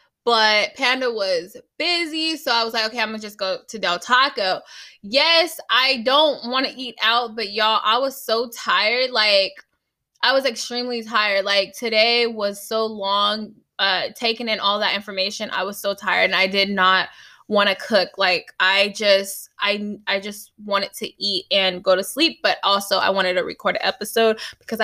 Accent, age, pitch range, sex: American, 10-29, 195-255 Hz, female